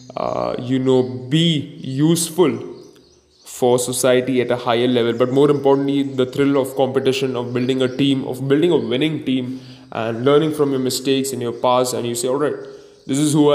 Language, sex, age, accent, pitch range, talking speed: English, male, 10-29, Indian, 125-140 Hz, 190 wpm